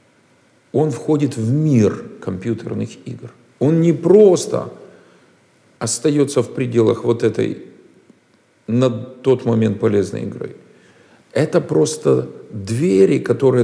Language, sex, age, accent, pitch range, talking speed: Russian, male, 50-69, native, 100-130 Hz, 100 wpm